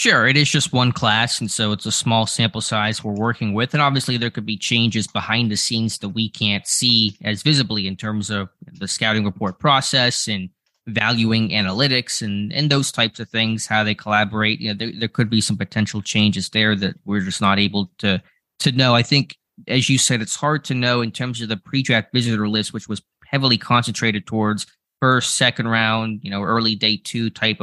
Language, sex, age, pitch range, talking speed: English, male, 20-39, 105-120 Hz, 215 wpm